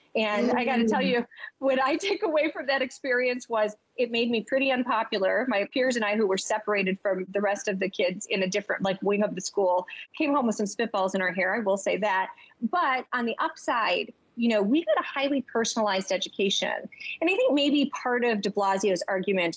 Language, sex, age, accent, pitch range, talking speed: English, female, 30-49, American, 200-260 Hz, 225 wpm